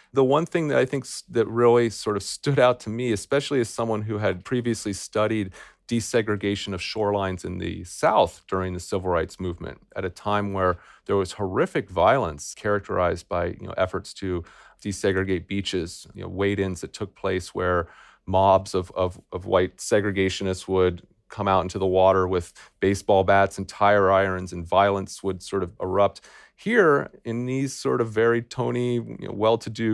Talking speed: 180 wpm